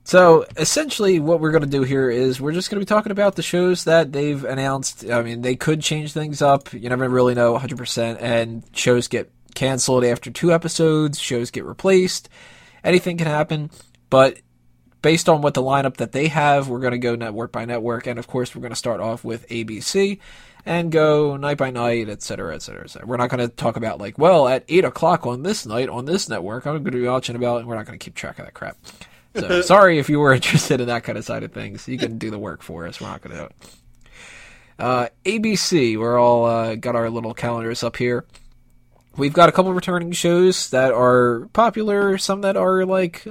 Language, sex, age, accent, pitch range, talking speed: English, male, 20-39, American, 120-165 Hz, 230 wpm